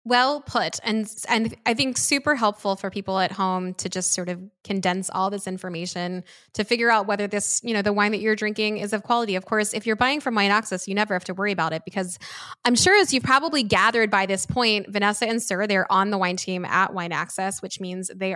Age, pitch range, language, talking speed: 10-29, 185-220 Hz, English, 240 wpm